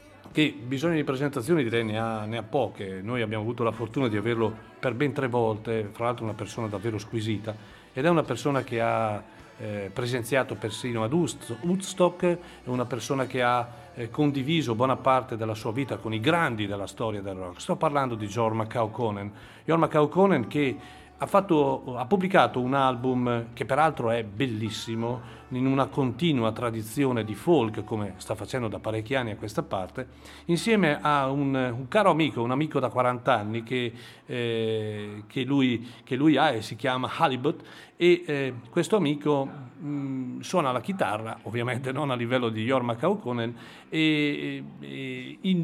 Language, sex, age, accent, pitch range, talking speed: Italian, male, 40-59, native, 115-145 Hz, 165 wpm